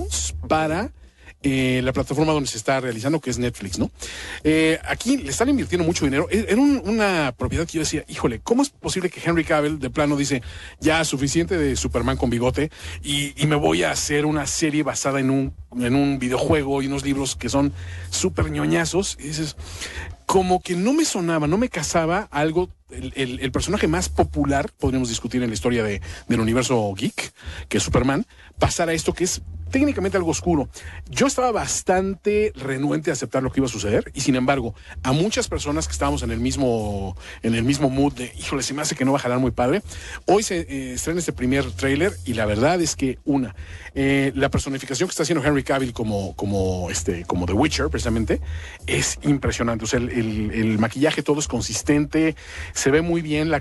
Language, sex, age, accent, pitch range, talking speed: English, male, 40-59, Mexican, 115-155 Hz, 205 wpm